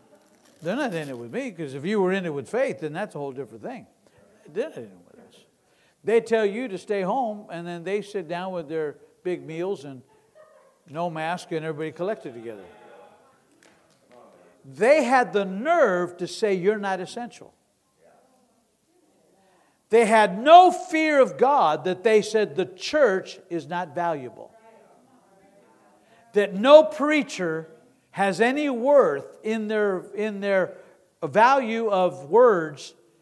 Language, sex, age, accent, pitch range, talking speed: English, male, 60-79, American, 175-235 Hz, 150 wpm